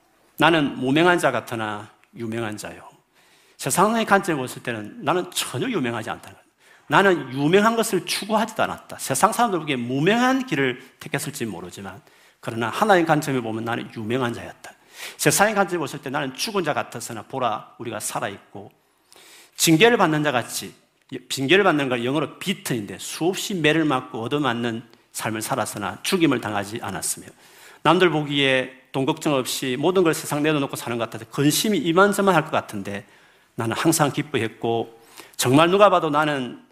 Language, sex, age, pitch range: Korean, male, 40-59, 120-165 Hz